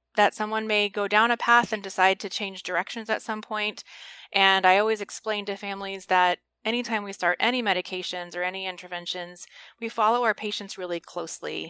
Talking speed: 185 wpm